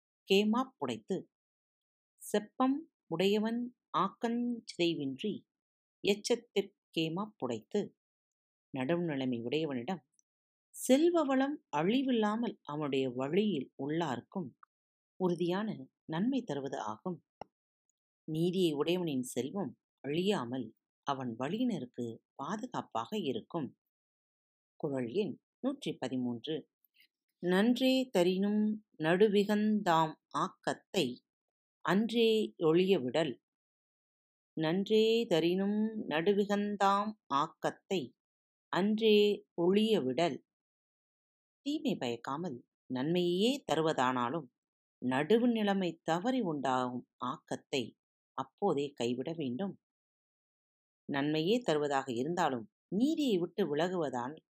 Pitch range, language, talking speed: 145-215 Hz, Tamil, 65 wpm